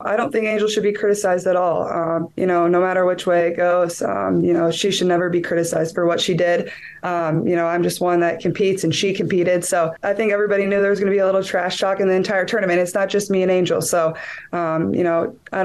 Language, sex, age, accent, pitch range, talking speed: English, female, 20-39, American, 175-225 Hz, 270 wpm